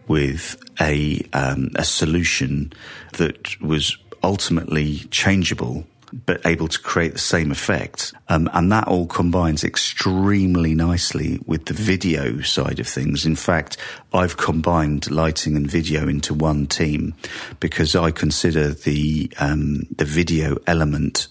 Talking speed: 130 wpm